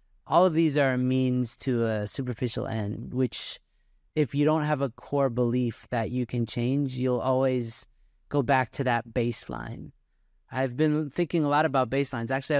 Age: 30-49